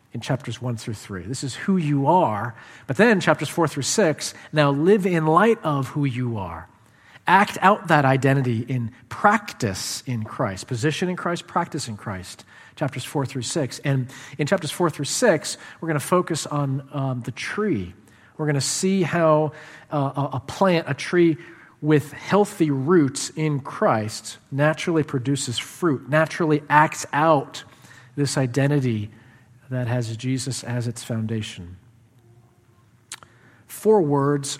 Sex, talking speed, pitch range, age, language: male, 150 wpm, 120-155 Hz, 40-59, English